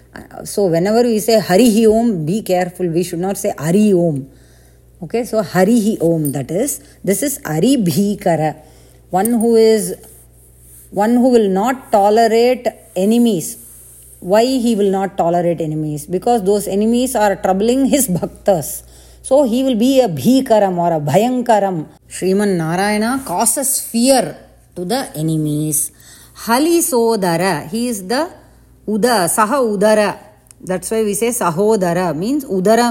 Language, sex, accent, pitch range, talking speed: English, female, Indian, 180-230 Hz, 140 wpm